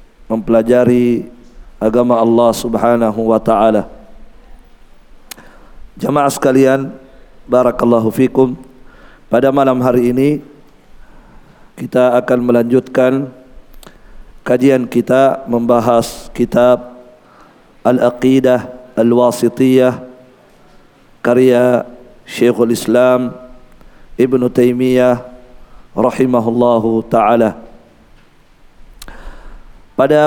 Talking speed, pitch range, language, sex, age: 60 wpm, 120-130 Hz, Indonesian, male, 50-69